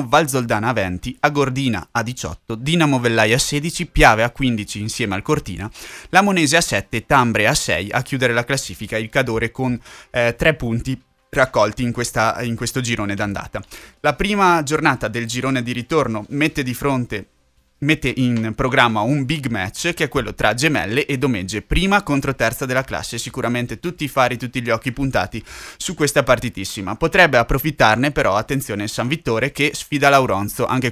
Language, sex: Italian, male